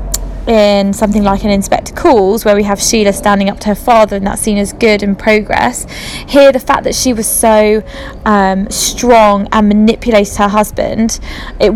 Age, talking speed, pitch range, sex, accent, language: 20-39, 185 wpm, 205-235 Hz, female, British, English